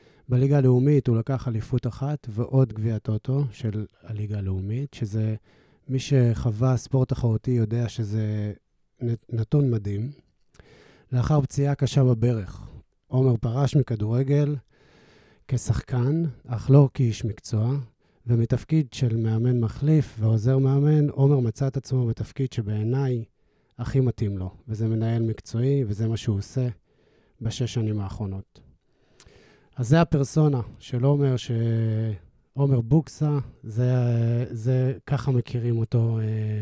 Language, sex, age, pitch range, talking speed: Hebrew, male, 30-49, 115-135 Hz, 115 wpm